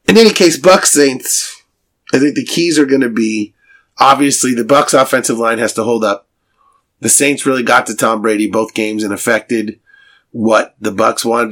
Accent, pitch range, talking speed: American, 115-180 Hz, 195 wpm